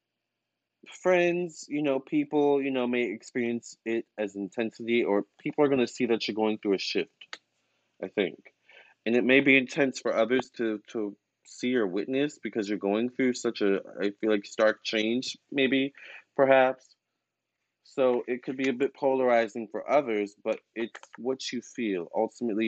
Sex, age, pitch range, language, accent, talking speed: male, 20-39, 105-130 Hz, English, American, 170 wpm